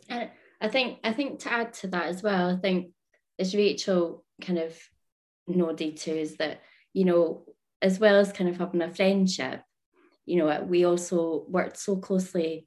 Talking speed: 170 wpm